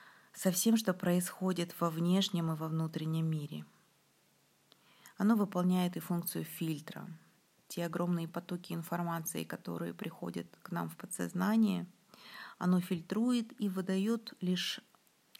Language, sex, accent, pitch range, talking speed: Russian, female, native, 175-205 Hz, 115 wpm